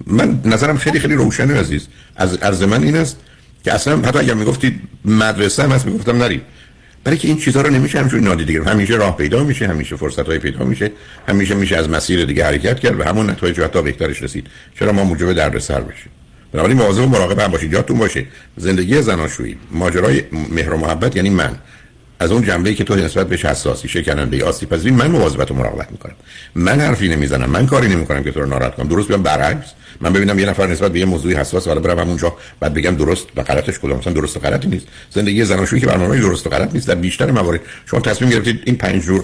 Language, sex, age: Persian, male, 60-79